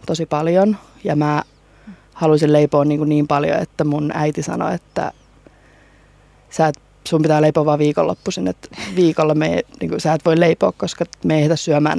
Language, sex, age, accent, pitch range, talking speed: Finnish, female, 20-39, native, 150-190 Hz, 170 wpm